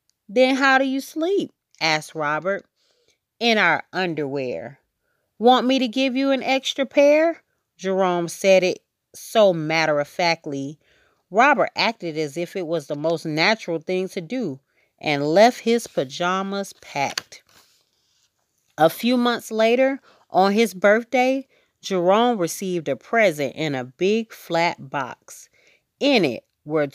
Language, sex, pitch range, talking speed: English, female, 155-250 Hz, 130 wpm